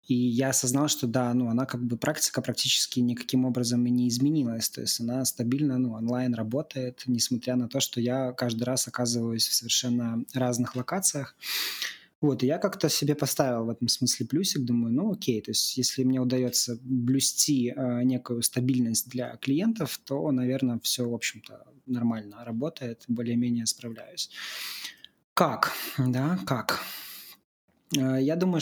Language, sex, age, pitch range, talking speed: Russian, male, 20-39, 120-135 Hz, 155 wpm